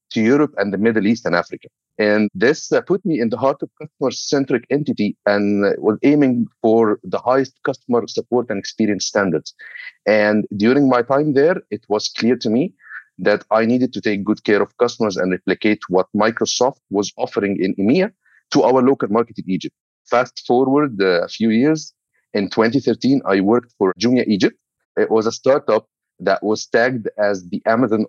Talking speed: 185 wpm